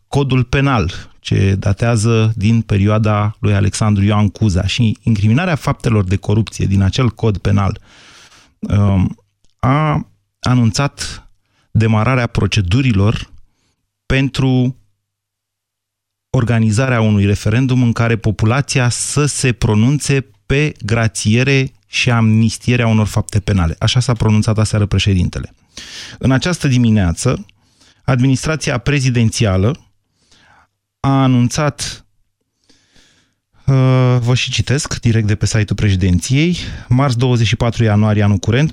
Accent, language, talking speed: native, Romanian, 100 wpm